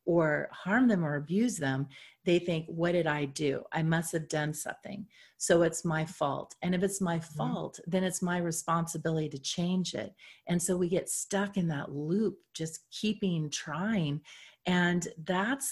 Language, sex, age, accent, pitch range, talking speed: English, female, 40-59, American, 155-200 Hz, 175 wpm